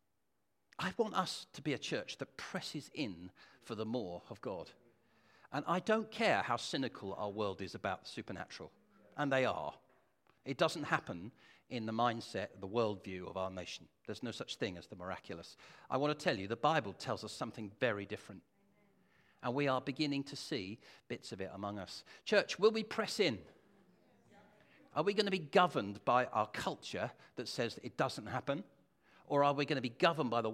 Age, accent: 50-69, British